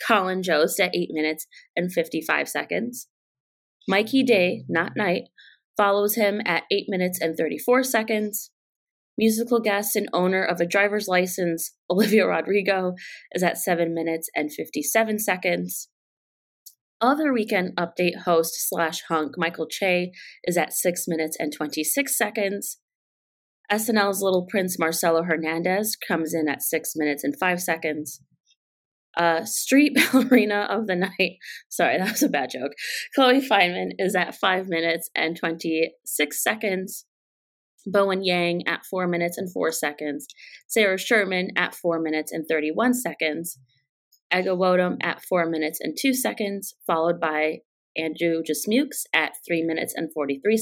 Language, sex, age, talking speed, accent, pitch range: English, female, 20-39, 140 wpm, American, 160-205 Hz